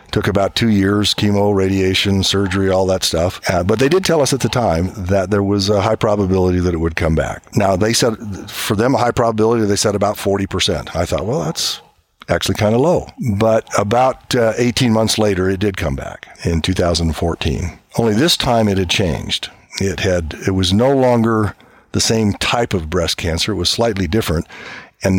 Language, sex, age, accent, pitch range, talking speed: English, male, 60-79, American, 90-110 Hz, 200 wpm